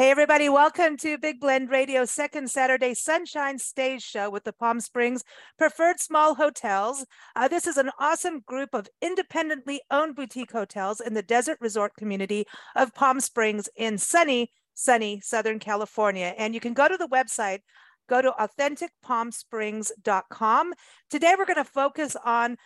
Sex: female